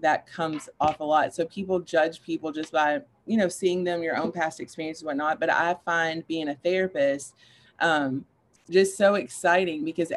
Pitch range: 145-165 Hz